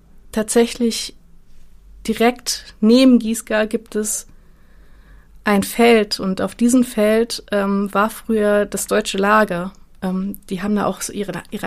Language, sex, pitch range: German, female, 190-220 Hz